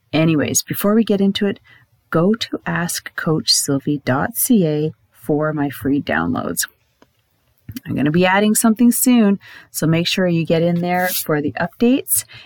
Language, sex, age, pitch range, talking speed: English, female, 40-59, 145-210 Hz, 145 wpm